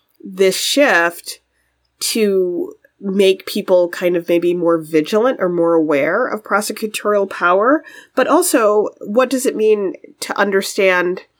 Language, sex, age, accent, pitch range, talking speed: English, female, 30-49, American, 170-205 Hz, 125 wpm